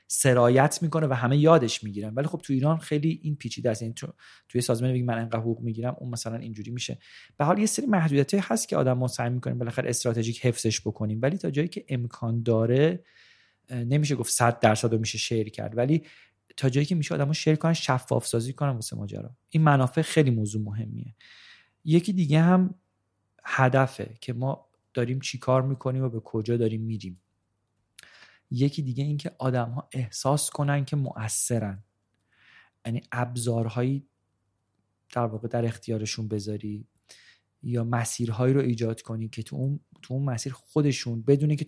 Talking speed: 165 wpm